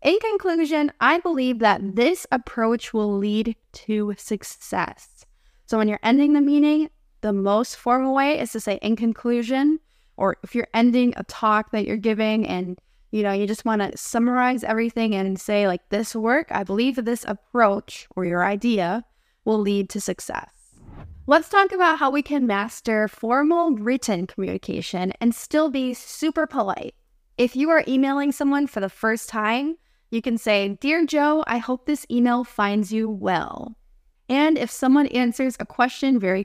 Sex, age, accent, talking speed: female, 10-29, American, 170 wpm